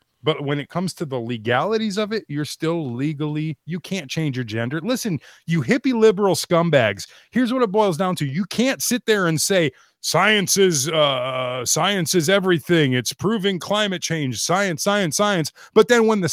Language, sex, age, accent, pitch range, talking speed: English, male, 30-49, American, 125-195 Hz, 185 wpm